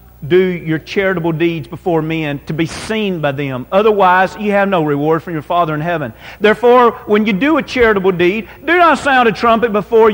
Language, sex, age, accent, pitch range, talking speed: English, male, 40-59, American, 150-220 Hz, 200 wpm